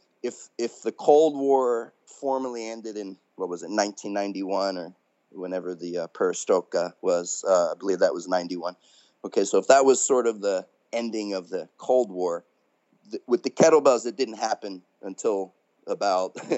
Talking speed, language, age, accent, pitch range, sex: 165 wpm, English, 30-49, American, 90-150 Hz, male